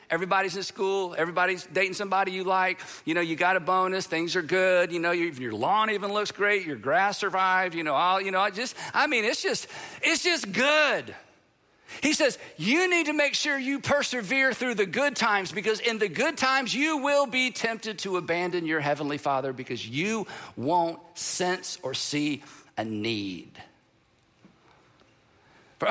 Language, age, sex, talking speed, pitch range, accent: English, 50-69, male, 180 wpm, 170-235 Hz, American